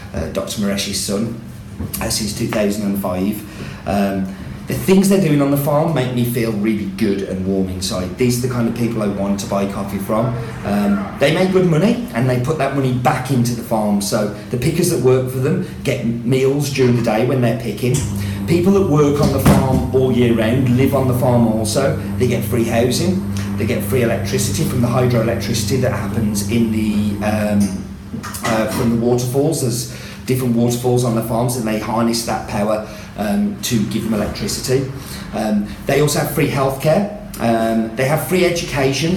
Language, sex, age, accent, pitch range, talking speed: English, male, 40-59, British, 105-130 Hz, 190 wpm